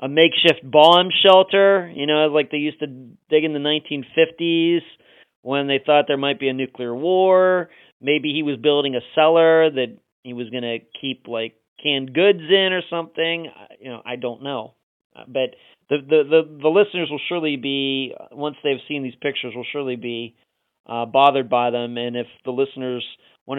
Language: English